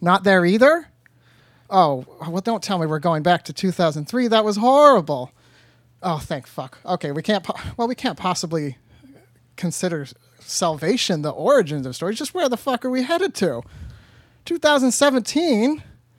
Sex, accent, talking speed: male, American, 155 wpm